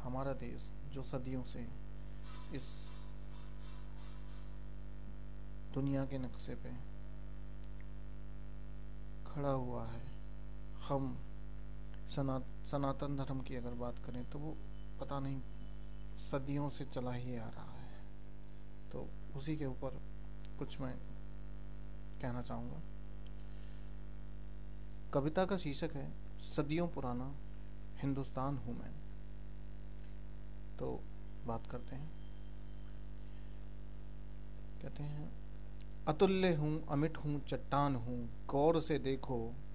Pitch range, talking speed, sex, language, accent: 125-150 Hz, 95 wpm, male, Hindi, native